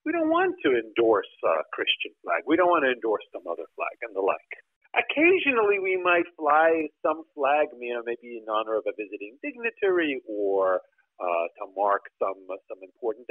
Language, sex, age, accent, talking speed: English, male, 50-69, American, 195 wpm